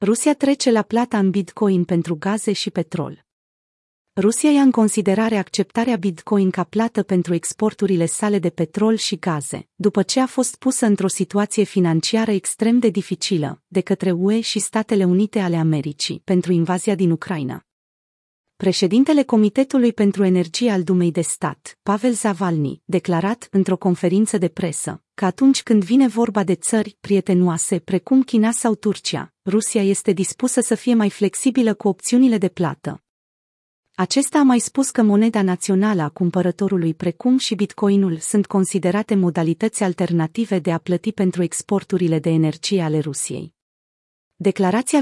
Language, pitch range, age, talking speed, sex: Romanian, 175-220 Hz, 30-49, 150 wpm, female